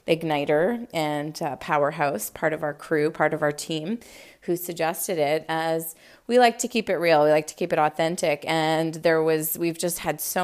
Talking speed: 200 wpm